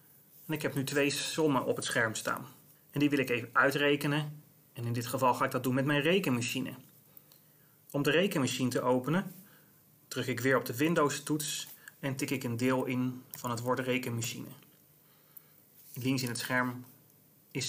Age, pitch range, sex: 30-49, 125-150 Hz, male